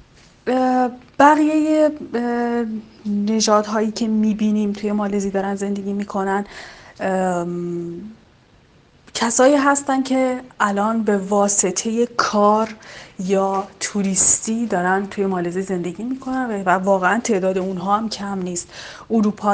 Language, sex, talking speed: Arabic, female, 100 wpm